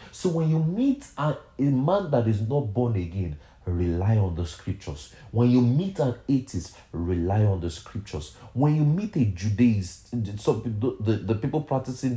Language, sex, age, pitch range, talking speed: English, male, 30-49, 95-140 Hz, 170 wpm